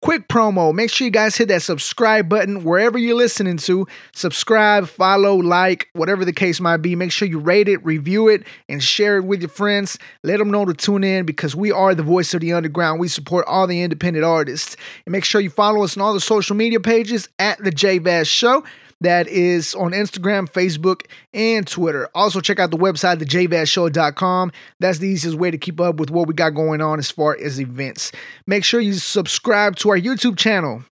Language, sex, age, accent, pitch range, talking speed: English, male, 20-39, American, 175-210 Hz, 210 wpm